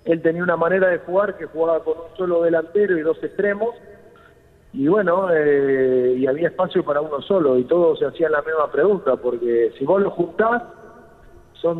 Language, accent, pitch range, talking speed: Spanish, Argentinian, 145-180 Hz, 190 wpm